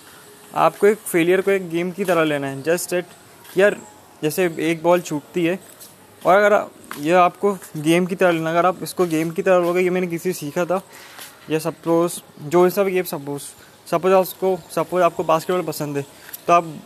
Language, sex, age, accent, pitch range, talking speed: Hindi, male, 20-39, native, 155-190 Hz, 200 wpm